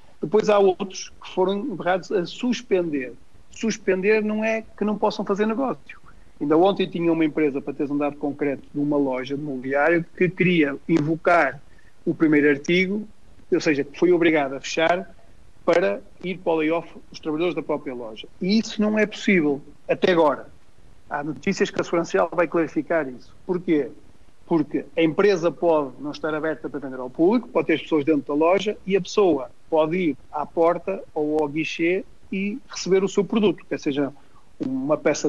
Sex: male